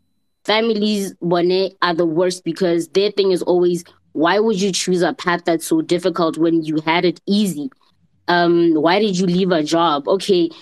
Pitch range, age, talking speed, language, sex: 175-210 Hz, 20-39, 175 wpm, English, female